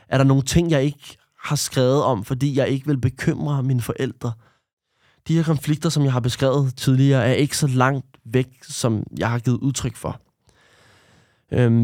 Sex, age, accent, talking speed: male, 20-39, native, 180 wpm